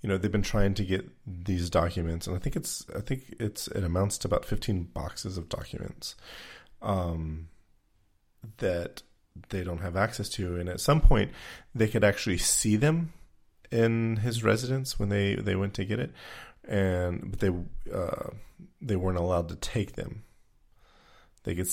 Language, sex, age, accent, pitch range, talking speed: English, male, 30-49, American, 85-105 Hz, 170 wpm